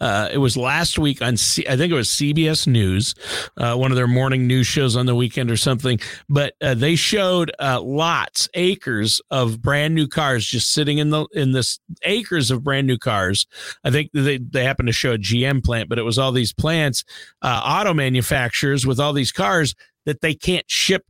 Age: 50-69